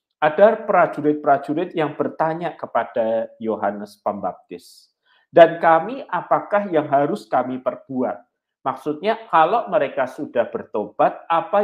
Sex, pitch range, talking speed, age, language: male, 125-180 Hz, 105 wpm, 50-69, Malay